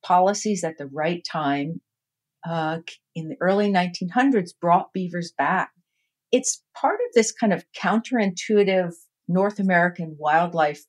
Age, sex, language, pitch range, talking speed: 50-69, female, English, 160-210 Hz, 125 wpm